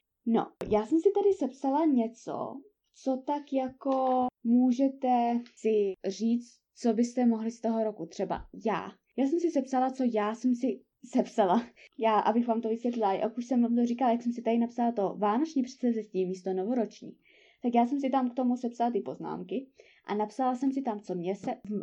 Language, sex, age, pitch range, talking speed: Czech, female, 20-39, 215-265 Hz, 190 wpm